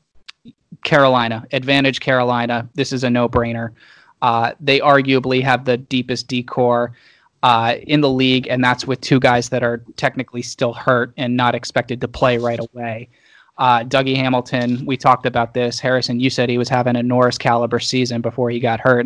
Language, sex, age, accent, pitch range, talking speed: English, male, 20-39, American, 120-130 Hz, 180 wpm